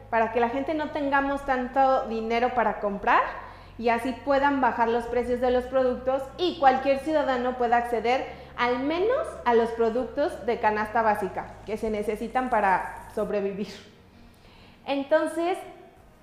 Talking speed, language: 140 wpm, Spanish